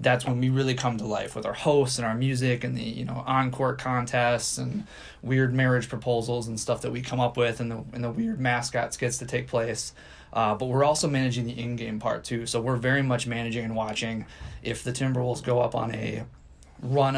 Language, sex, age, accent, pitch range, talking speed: English, male, 20-39, American, 115-130 Hz, 225 wpm